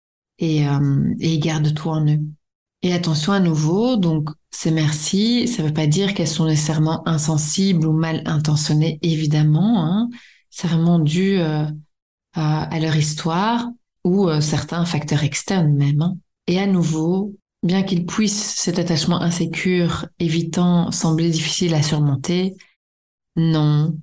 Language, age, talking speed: French, 30-49, 145 wpm